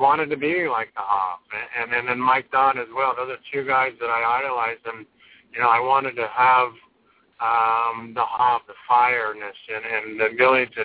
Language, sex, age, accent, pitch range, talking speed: English, male, 50-69, American, 115-130 Hz, 200 wpm